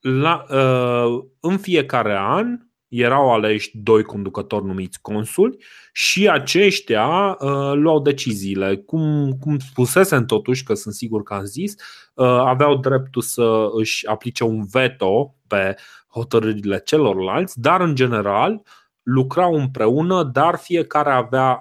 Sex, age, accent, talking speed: male, 30-49, native, 125 wpm